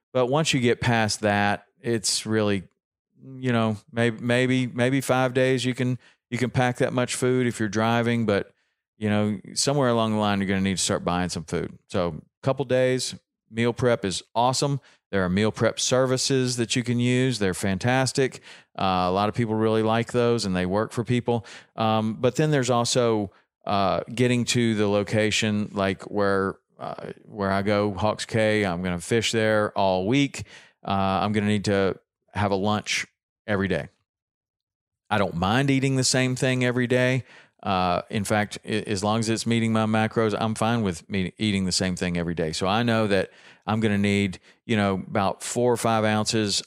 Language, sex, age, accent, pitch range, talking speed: English, male, 40-59, American, 100-120 Hz, 200 wpm